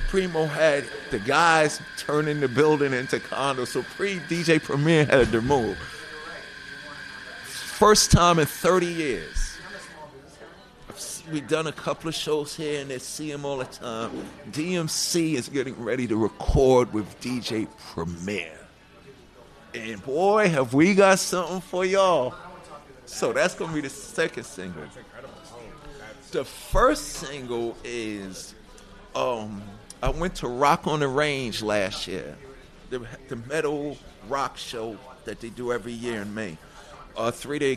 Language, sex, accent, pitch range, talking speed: English, male, American, 125-160 Hz, 140 wpm